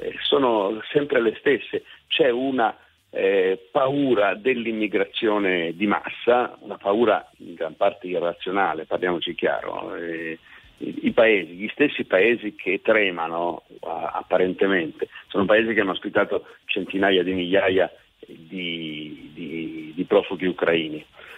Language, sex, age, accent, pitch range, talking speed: Italian, male, 50-69, native, 95-145 Hz, 120 wpm